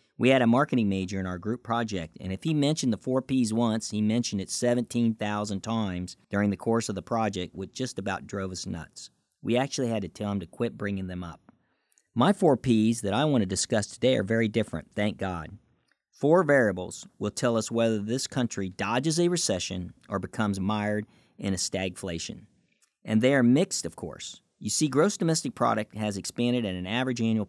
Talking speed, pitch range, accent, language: 205 wpm, 95-120 Hz, American, English